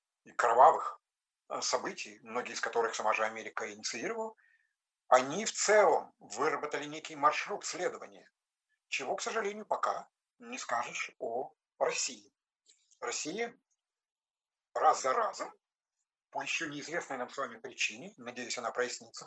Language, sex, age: Russian, male, 50-69